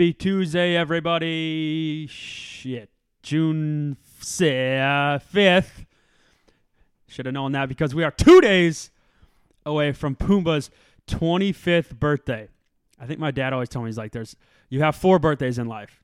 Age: 20-39